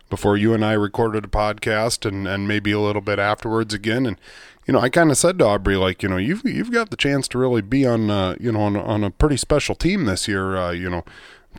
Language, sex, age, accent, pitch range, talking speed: English, male, 30-49, American, 100-125 Hz, 265 wpm